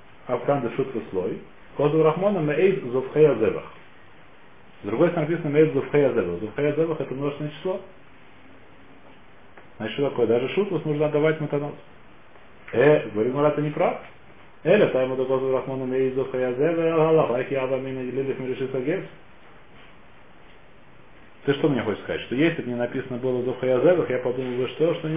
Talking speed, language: 145 wpm, Russian